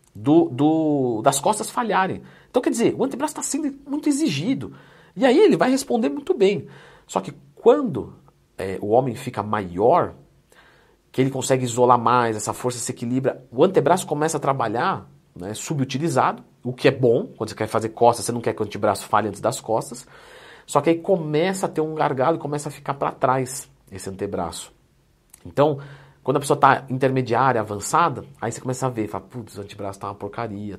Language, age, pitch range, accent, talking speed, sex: Portuguese, 40-59, 110-180 Hz, Brazilian, 195 wpm, male